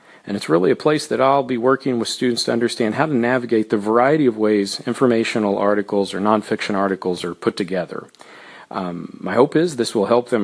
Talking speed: 205 wpm